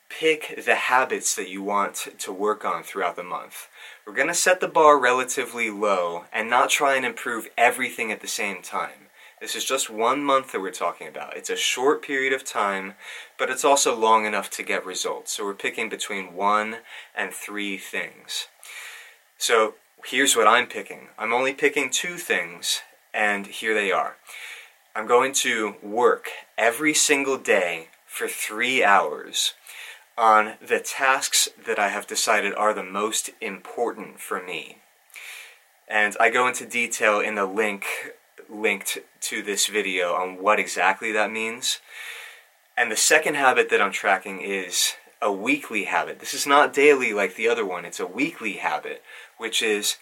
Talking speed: 170 wpm